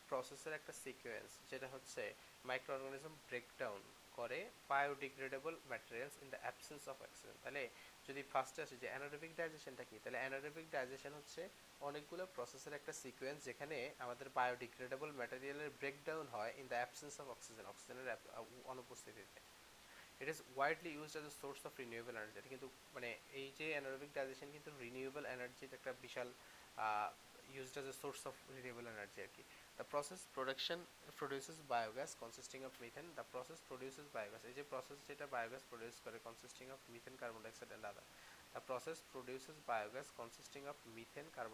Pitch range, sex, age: 125-145 Hz, male, 20-39